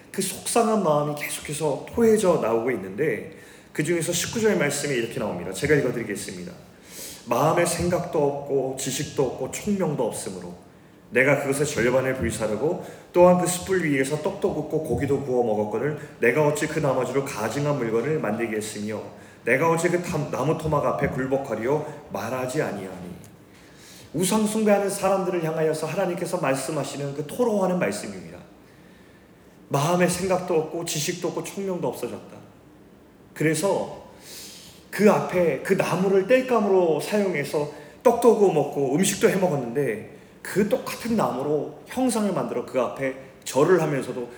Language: Korean